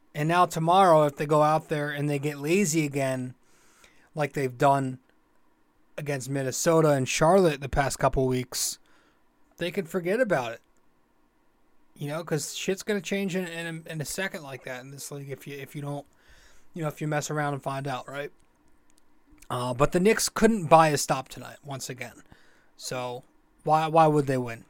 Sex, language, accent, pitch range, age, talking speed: male, English, American, 135-160 Hz, 20-39, 185 wpm